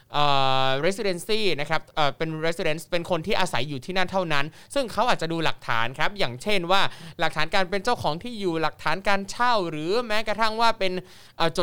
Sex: male